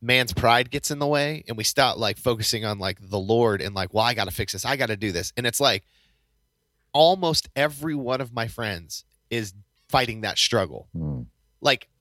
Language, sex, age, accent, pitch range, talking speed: English, male, 30-49, American, 100-125 Hz, 210 wpm